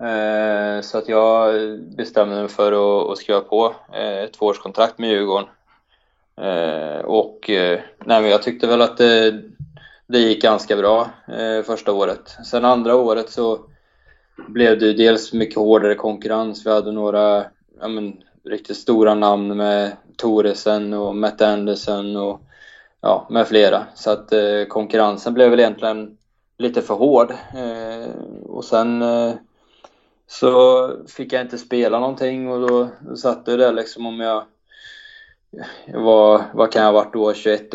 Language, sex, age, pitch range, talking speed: Swedish, male, 20-39, 105-120 Hz, 130 wpm